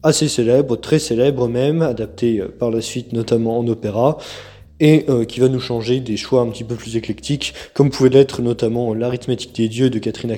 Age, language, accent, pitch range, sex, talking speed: 20-39, French, French, 115-130 Hz, male, 190 wpm